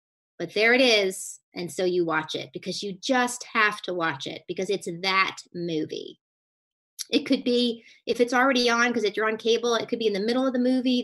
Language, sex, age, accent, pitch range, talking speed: English, female, 30-49, American, 185-245 Hz, 225 wpm